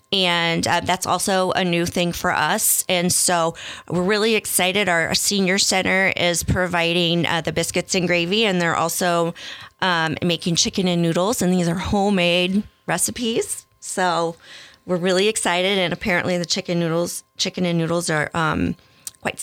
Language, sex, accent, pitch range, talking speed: English, female, American, 165-190 Hz, 160 wpm